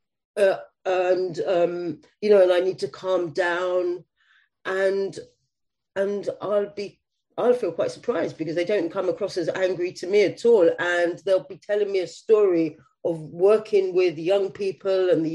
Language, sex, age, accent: English, female, 40-59, British